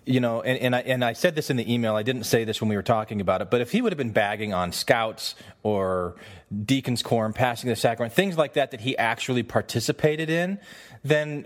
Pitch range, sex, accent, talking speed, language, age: 115-145 Hz, male, American, 240 wpm, English, 30-49